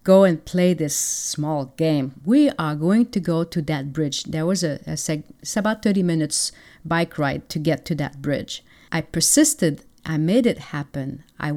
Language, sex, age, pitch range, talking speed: English, female, 40-59, 155-195 Hz, 180 wpm